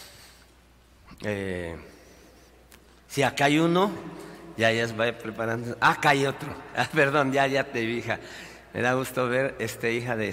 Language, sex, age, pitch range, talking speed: Spanish, male, 50-69, 110-140 Hz, 165 wpm